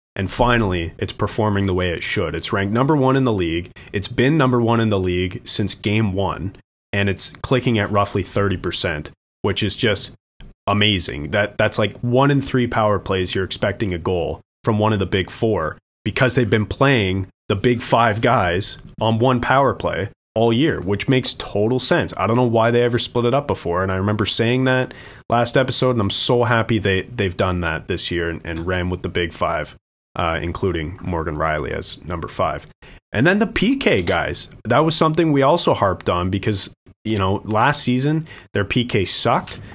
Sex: male